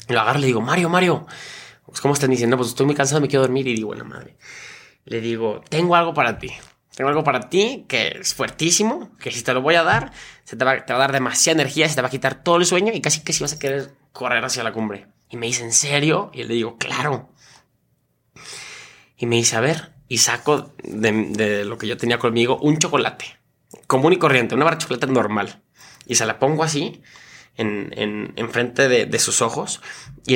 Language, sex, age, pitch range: English, male, 20-39, 115-150 Hz